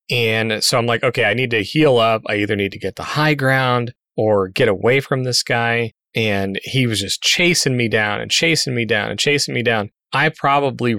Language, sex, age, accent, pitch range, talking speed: English, male, 30-49, American, 110-140 Hz, 225 wpm